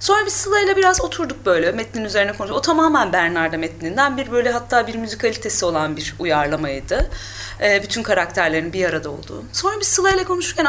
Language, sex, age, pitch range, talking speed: Turkish, female, 30-49, 170-275 Hz, 170 wpm